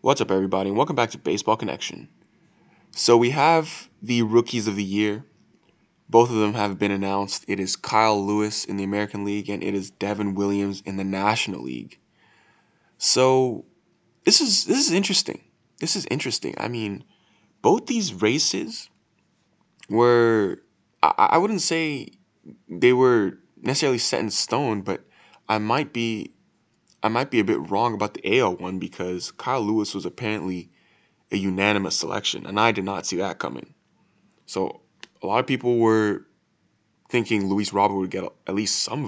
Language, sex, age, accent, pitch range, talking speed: English, male, 20-39, American, 95-115 Hz, 165 wpm